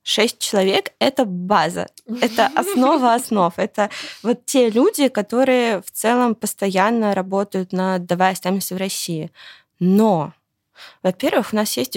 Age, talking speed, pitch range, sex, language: 20-39, 135 wpm, 185-215 Hz, female, Russian